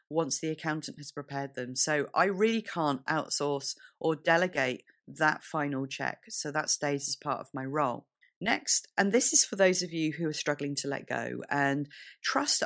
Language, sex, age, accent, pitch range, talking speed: English, female, 40-59, British, 150-195 Hz, 190 wpm